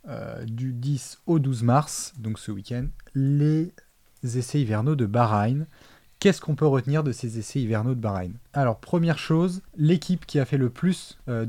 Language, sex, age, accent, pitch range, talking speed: French, male, 20-39, French, 120-155 Hz, 180 wpm